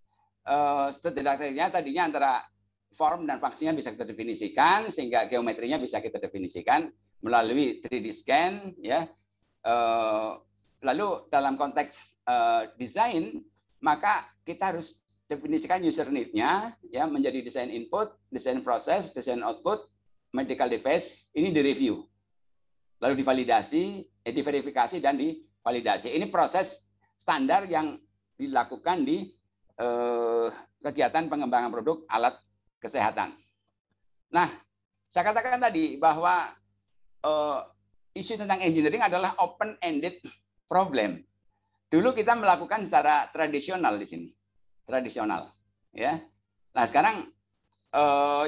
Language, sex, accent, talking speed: Indonesian, male, native, 105 wpm